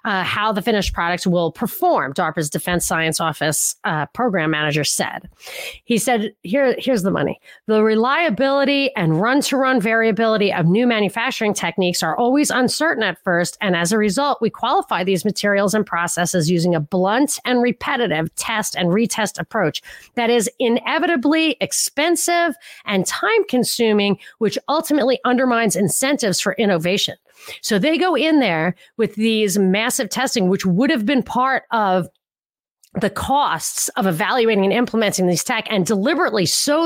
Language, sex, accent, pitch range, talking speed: English, female, American, 185-255 Hz, 150 wpm